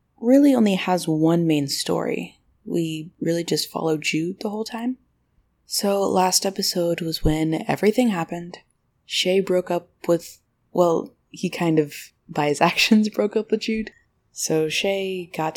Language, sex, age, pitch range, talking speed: English, female, 20-39, 155-210 Hz, 150 wpm